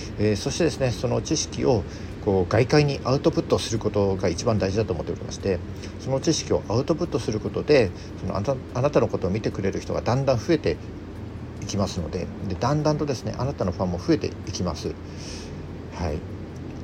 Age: 50-69